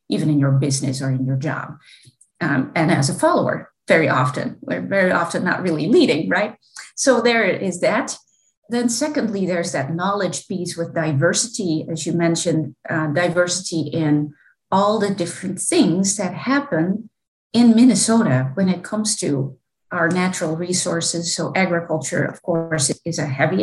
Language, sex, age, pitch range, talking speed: English, female, 30-49, 155-195 Hz, 155 wpm